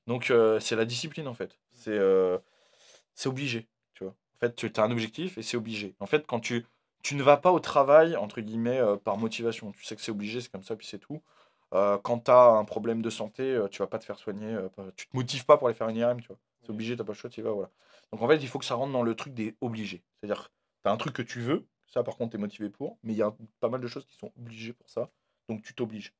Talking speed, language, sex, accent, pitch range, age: 300 wpm, French, male, French, 110-135 Hz, 20-39